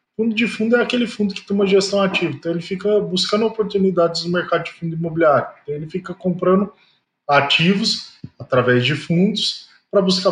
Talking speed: 180 wpm